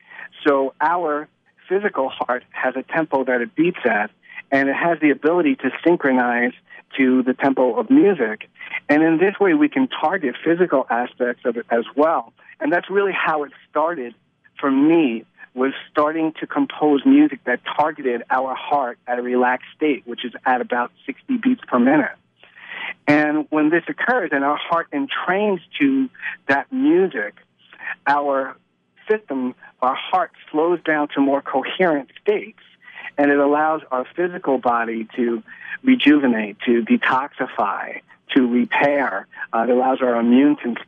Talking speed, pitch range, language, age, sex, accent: 150 wpm, 125-175 Hz, English, 50-69, male, American